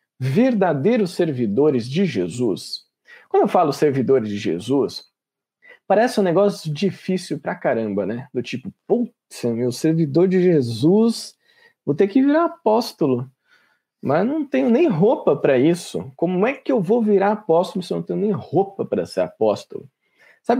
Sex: male